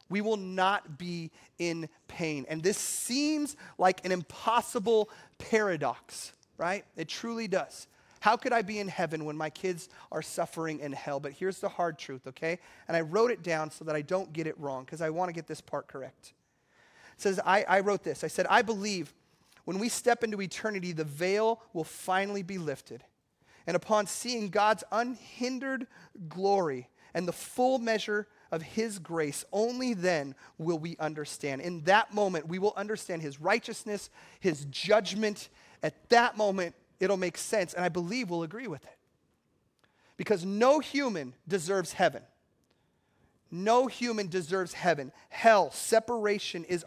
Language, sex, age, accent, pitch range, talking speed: English, male, 30-49, American, 165-215 Hz, 170 wpm